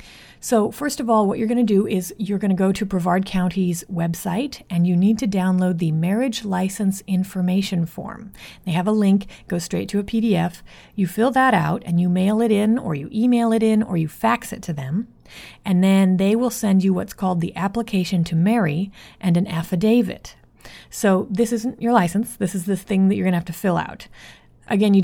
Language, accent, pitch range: English, American, 175-215 Hz